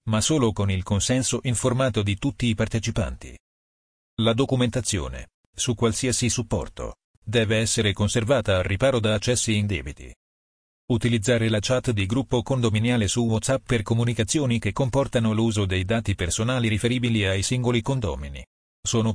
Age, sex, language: 40-59, male, Italian